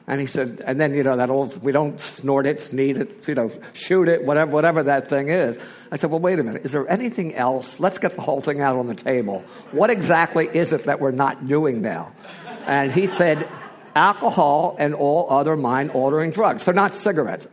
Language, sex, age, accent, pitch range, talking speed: English, male, 50-69, American, 135-180 Hz, 220 wpm